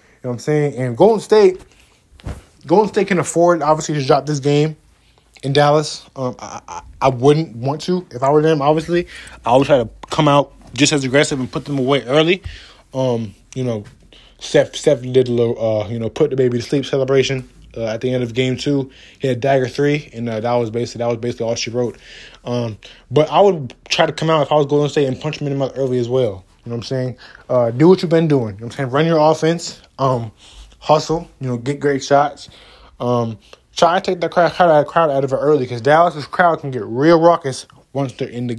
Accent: American